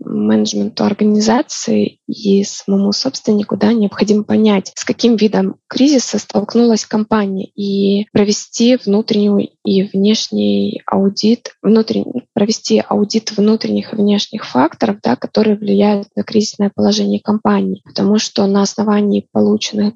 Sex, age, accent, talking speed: female, 20-39, native, 115 wpm